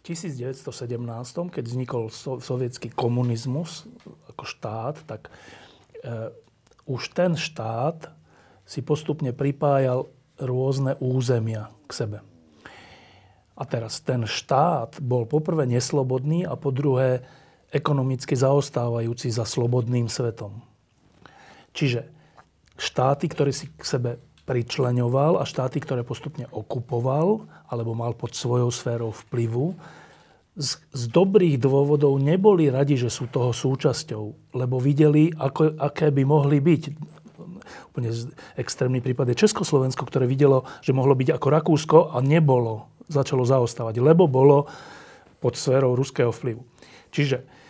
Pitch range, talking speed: 125-155 Hz, 115 wpm